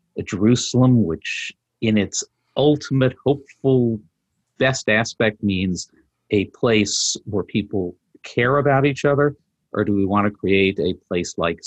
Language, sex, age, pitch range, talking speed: English, male, 50-69, 90-115 Hz, 140 wpm